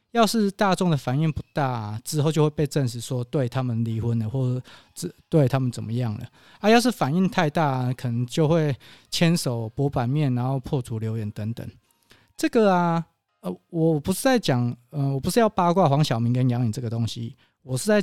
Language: Chinese